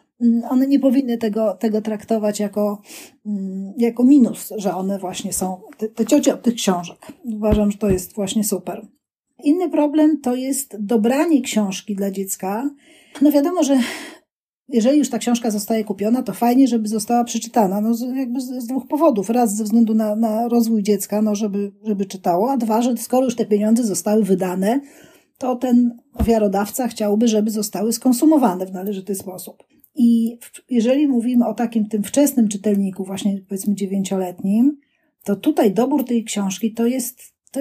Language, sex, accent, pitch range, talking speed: Polish, female, native, 210-275 Hz, 165 wpm